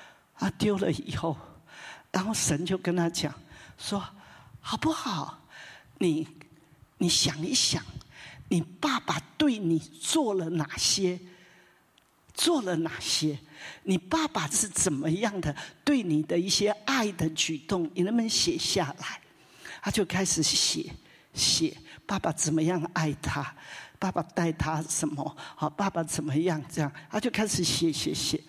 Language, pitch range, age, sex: English, 160-230 Hz, 50-69, male